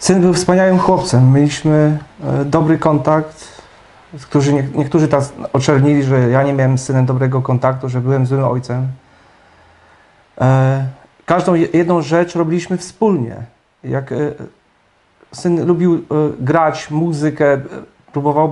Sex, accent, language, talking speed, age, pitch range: male, native, Polish, 125 wpm, 40-59, 150-175 Hz